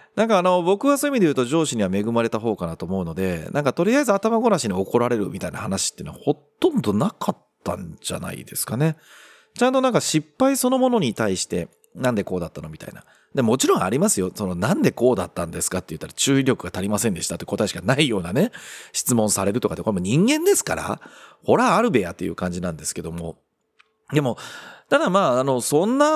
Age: 40-59